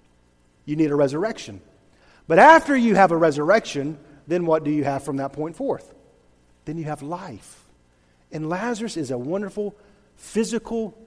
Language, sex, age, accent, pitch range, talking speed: English, male, 50-69, American, 145-205 Hz, 155 wpm